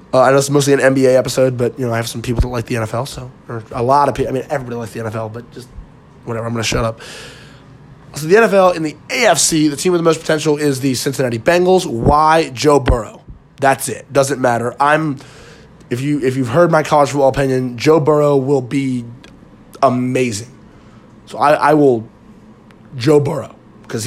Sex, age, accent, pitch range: male, 20-39, American, 125-155 Hz